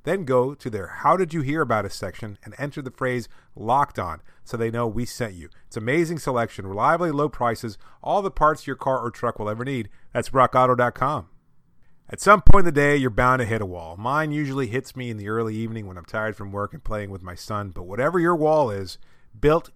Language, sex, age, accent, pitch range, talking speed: English, male, 30-49, American, 110-150 Hz, 235 wpm